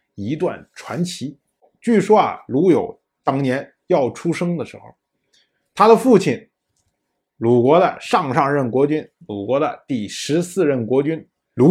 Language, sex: Chinese, male